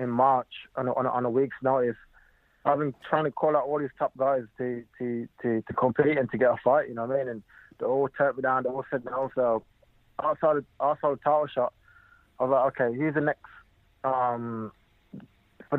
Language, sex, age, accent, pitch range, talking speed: English, male, 20-39, British, 120-140 Hz, 230 wpm